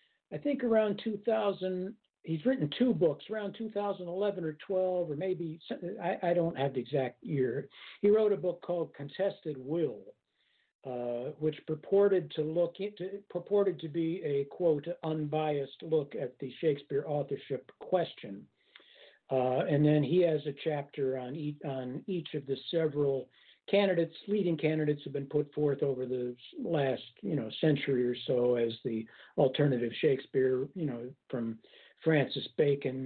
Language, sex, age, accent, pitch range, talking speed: English, male, 60-79, American, 135-180 Hz, 150 wpm